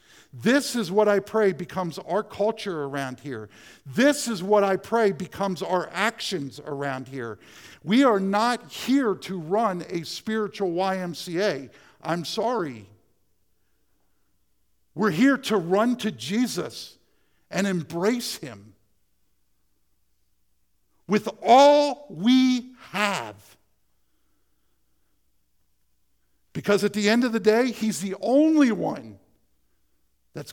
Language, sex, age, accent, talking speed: English, male, 50-69, American, 110 wpm